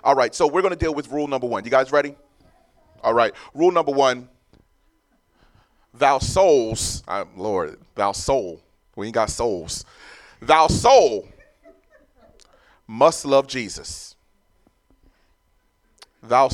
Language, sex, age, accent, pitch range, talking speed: English, male, 30-49, American, 135-170 Hz, 125 wpm